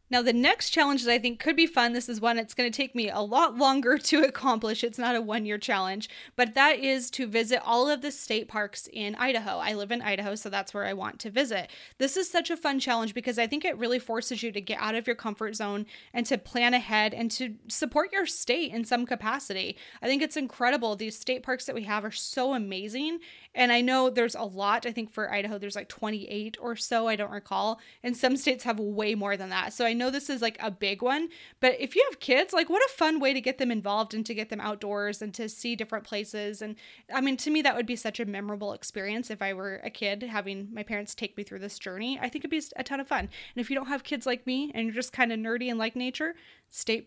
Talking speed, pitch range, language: 265 wpm, 215-260 Hz, English